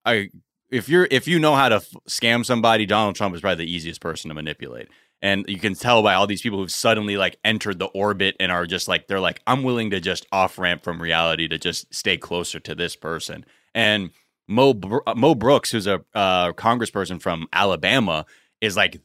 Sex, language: male, English